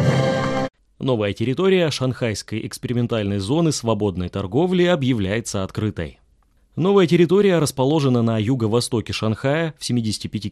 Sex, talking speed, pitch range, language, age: male, 95 wpm, 110-145 Hz, Russian, 20-39